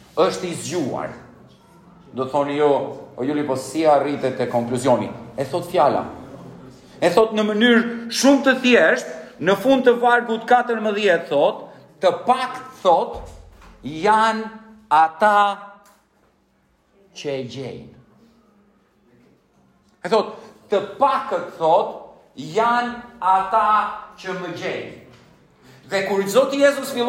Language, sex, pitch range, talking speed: English, male, 160-220 Hz, 60 wpm